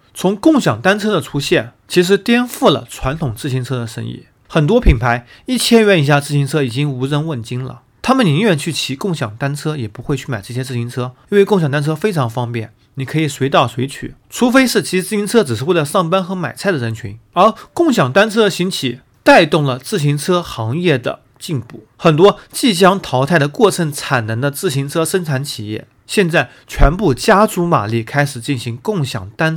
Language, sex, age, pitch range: Chinese, male, 30-49, 125-195 Hz